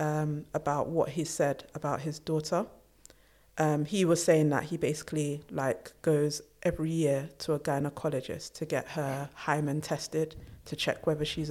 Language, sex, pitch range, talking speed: English, female, 150-180 Hz, 160 wpm